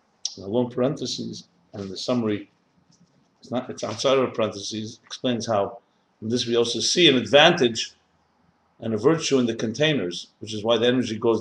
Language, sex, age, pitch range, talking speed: English, male, 50-69, 110-140 Hz, 185 wpm